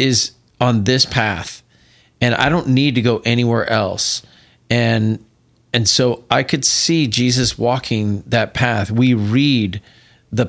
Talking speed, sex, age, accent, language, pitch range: 145 wpm, male, 40-59, American, English, 105-125 Hz